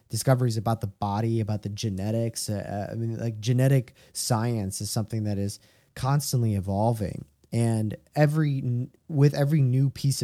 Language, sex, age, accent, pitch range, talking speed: English, male, 20-39, American, 110-135 Hz, 145 wpm